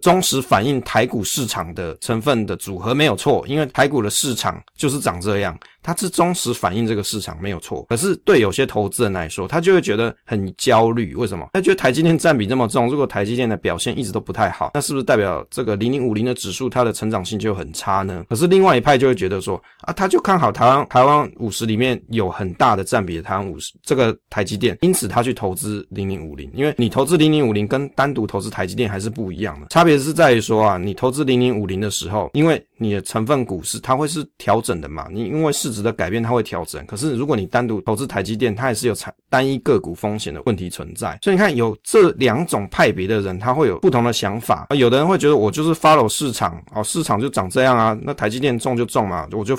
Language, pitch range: Chinese, 105-135 Hz